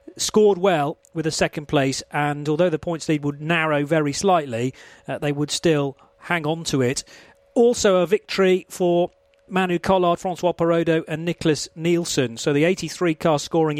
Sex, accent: male, British